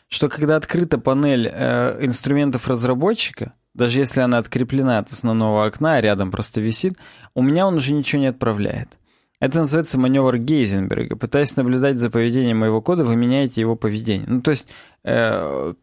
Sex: male